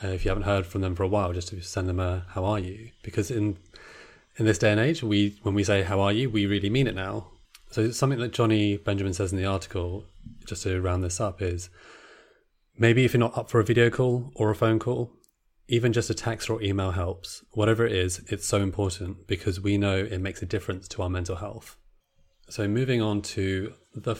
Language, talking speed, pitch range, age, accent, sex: English, 235 wpm, 95-110 Hz, 30-49, British, male